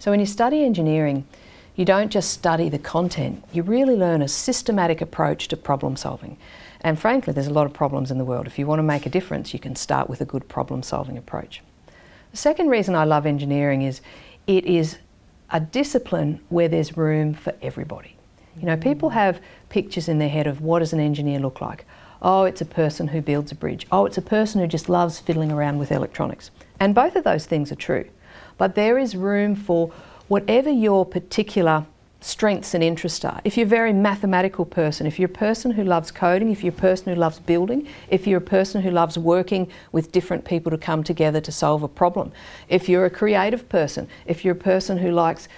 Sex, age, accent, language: female, 50-69, Australian, English